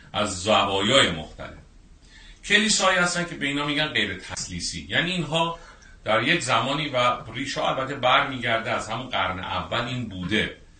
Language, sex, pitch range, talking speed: English, male, 90-125 Hz, 165 wpm